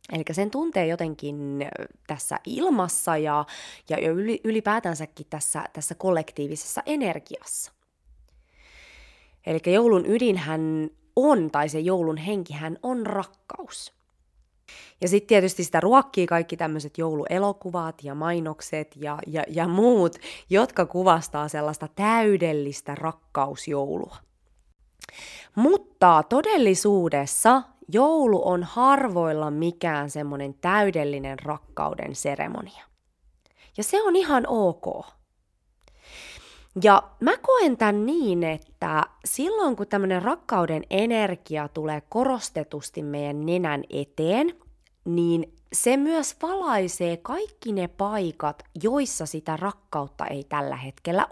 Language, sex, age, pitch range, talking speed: Finnish, female, 20-39, 150-215 Hz, 100 wpm